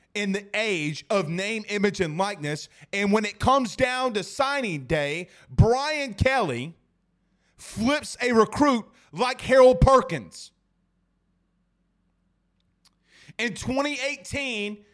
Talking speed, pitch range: 105 wpm, 205-280 Hz